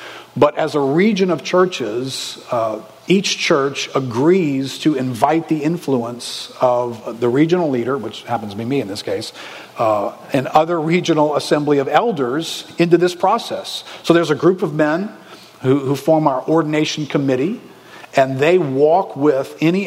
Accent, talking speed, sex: American, 160 wpm, male